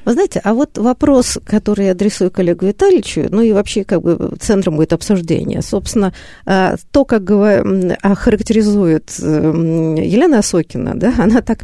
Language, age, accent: Russian, 50-69, native